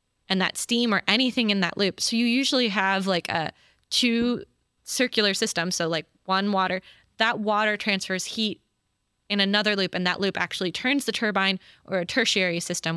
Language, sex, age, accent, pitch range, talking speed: English, female, 20-39, American, 170-210 Hz, 180 wpm